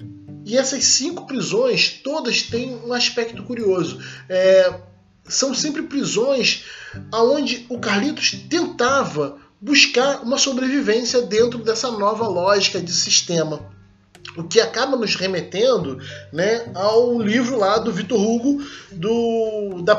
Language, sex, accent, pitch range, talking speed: Portuguese, male, Brazilian, 175-240 Hz, 120 wpm